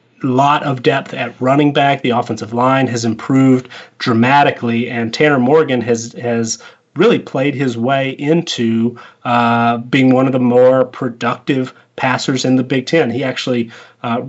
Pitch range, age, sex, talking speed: 120-140 Hz, 30-49, male, 160 wpm